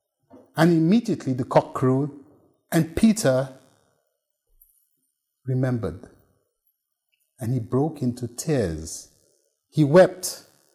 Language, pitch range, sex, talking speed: English, 115-175 Hz, male, 85 wpm